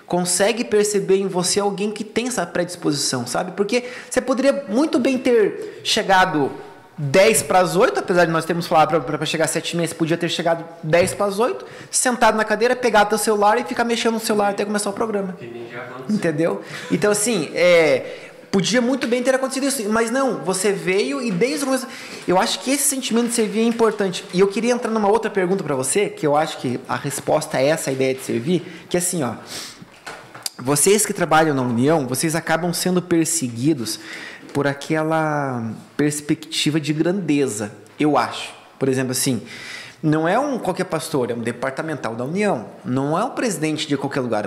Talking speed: 190 wpm